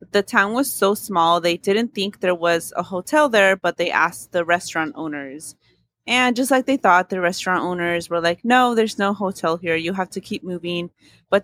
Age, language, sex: 20-39, English, female